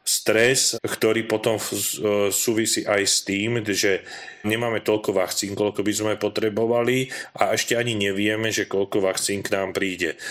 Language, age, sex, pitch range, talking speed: Slovak, 40-59, male, 100-110 Hz, 145 wpm